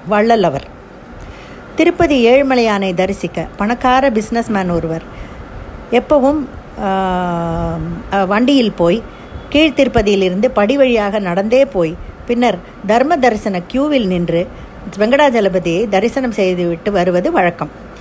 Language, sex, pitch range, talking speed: Tamil, female, 185-245 Hz, 85 wpm